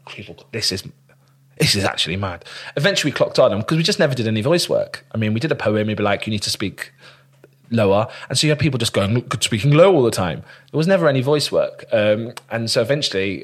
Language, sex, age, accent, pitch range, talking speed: English, male, 30-49, British, 105-140 Hz, 255 wpm